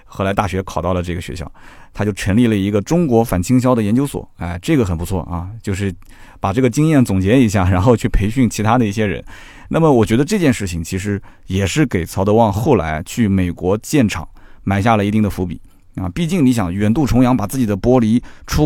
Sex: male